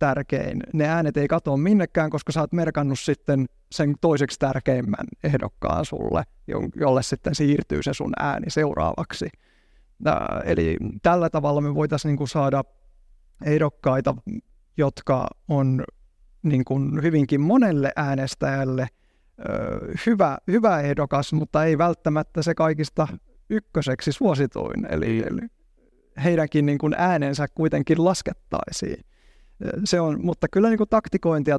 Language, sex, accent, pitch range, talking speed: Finnish, male, native, 140-165 Hz, 115 wpm